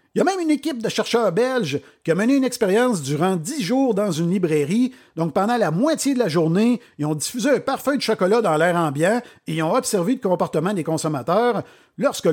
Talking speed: 225 wpm